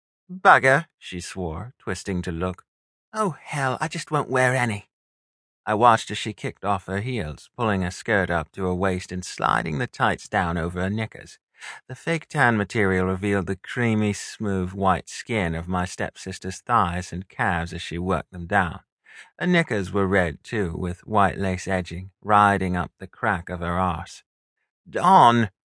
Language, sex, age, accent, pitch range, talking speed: English, male, 30-49, British, 90-125 Hz, 175 wpm